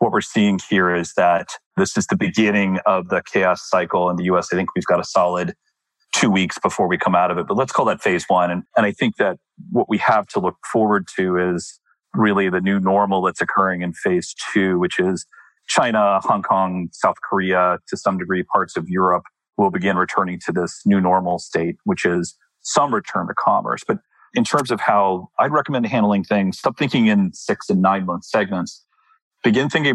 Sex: male